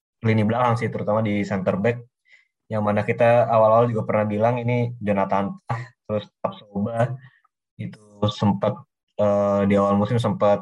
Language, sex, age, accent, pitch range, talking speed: Indonesian, male, 20-39, native, 105-130 Hz, 140 wpm